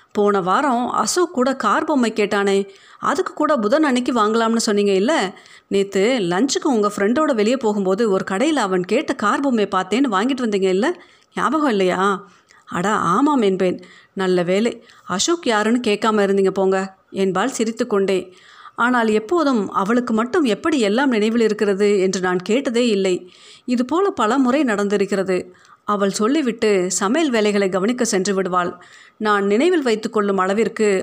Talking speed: 135 wpm